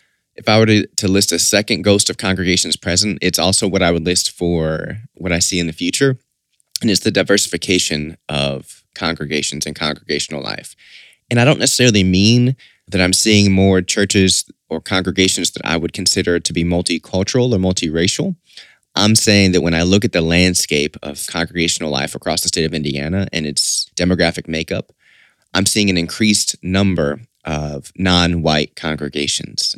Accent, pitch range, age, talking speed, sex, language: American, 85-100 Hz, 20-39, 170 wpm, male, English